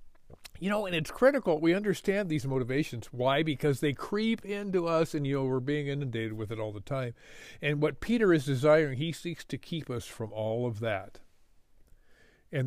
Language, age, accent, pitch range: English, 50-69, American, 115-145 Hz